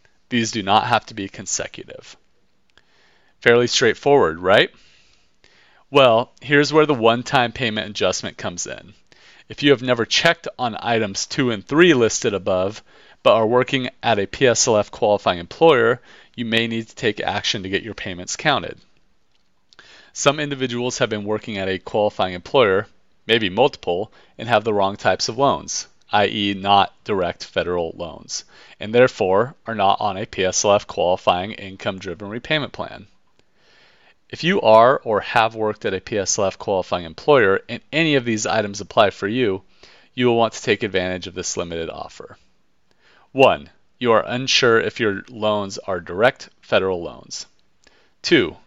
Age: 40-59